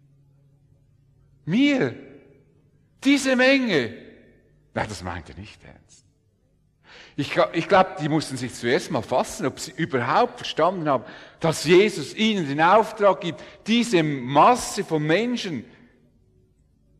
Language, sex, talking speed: English, male, 115 wpm